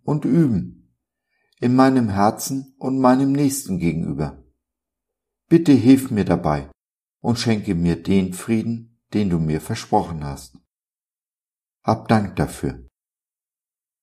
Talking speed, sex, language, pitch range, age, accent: 110 wpm, male, German, 85-115 Hz, 60-79, German